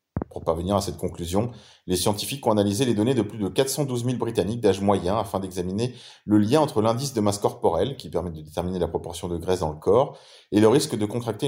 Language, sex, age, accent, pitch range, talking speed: French, male, 30-49, French, 95-125 Hz, 230 wpm